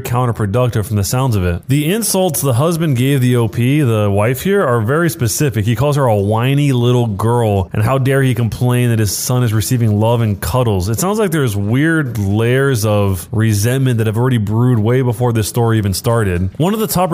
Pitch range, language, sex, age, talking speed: 110-140 Hz, English, male, 20-39, 215 wpm